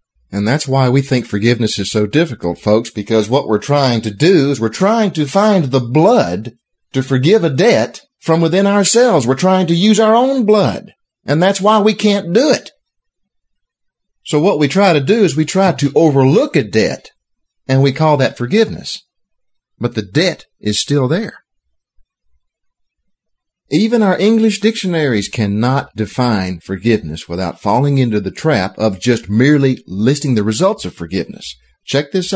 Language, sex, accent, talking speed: English, male, American, 165 wpm